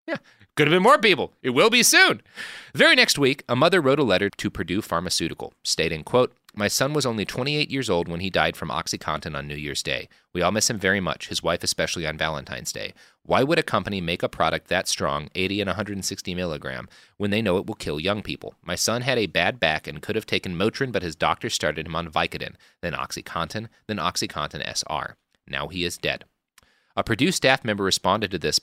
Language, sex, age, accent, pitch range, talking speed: English, male, 30-49, American, 90-120 Hz, 220 wpm